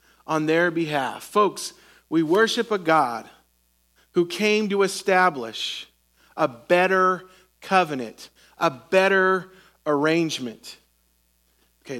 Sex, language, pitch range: male, English, 165-240 Hz